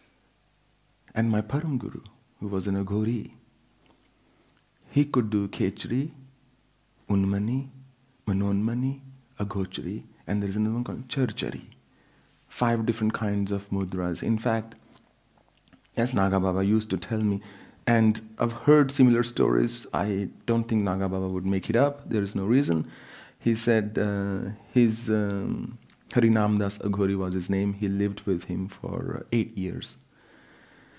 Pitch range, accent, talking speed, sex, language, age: 100-125 Hz, Indian, 135 wpm, male, English, 40-59